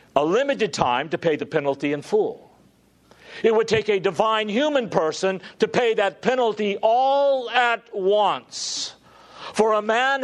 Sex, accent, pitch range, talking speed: male, American, 165-230 Hz, 150 wpm